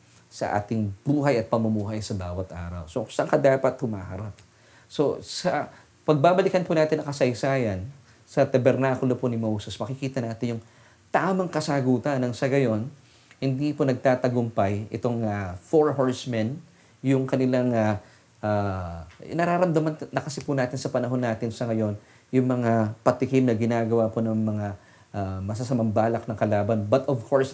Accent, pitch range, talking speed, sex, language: Filipino, 110-135 Hz, 150 wpm, male, English